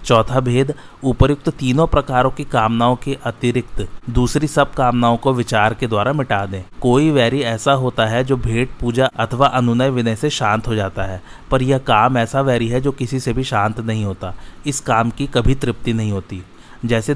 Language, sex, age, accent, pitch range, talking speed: Hindi, male, 30-49, native, 110-130 Hz, 190 wpm